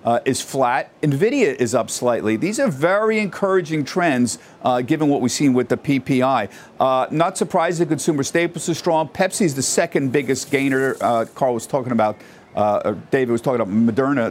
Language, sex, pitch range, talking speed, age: English, male, 135-190 Hz, 185 wpm, 50-69